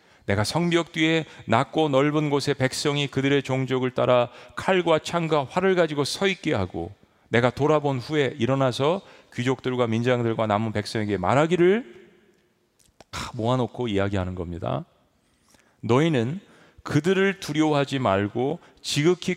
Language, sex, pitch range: Korean, male, 110-160 Hz